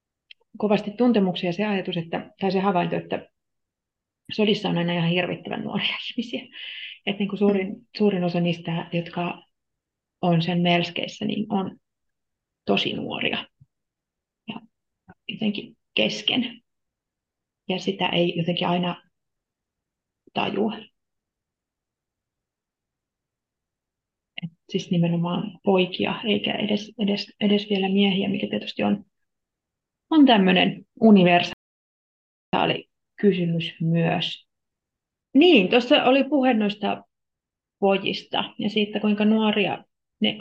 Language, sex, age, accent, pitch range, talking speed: Finnish, female, 30-49, native, 175-215 Hz, 100 wpm